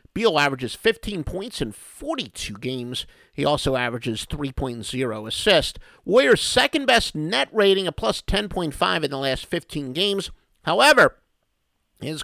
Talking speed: 125 wpm